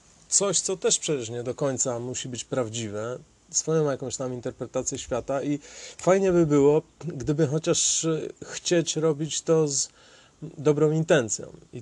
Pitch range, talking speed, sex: 130-165 Hz, 140 wpm, male